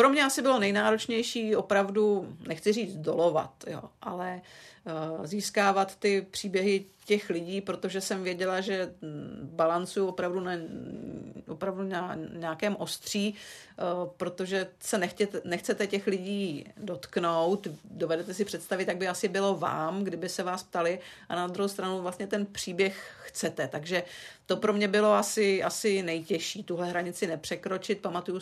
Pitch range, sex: 170-205 Hz, female